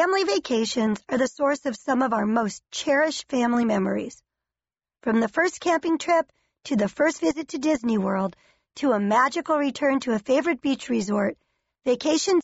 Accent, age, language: American, 40-59, English